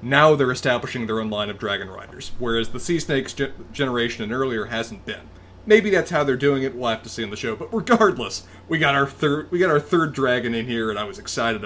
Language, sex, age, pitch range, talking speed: English, male, 30-49, 125-170 Hz, 250 wpm